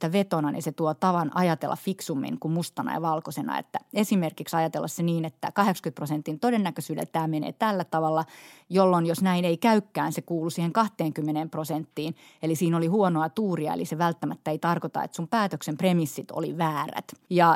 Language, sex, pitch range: Finnish, female, 160-185 Hz